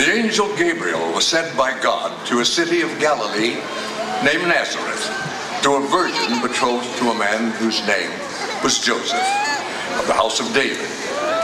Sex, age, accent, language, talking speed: male, 60-79, American, English, 155 wpm